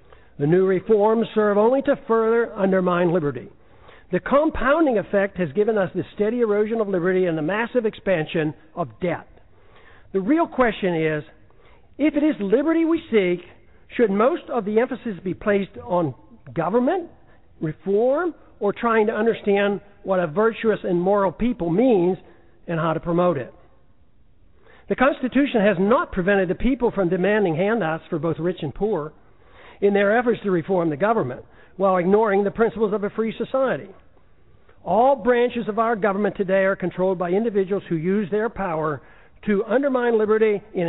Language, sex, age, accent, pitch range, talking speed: English, male, 60-79, American, 185-235 Hz, 160 wpm